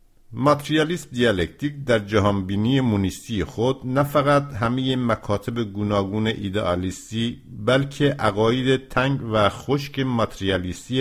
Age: 50-69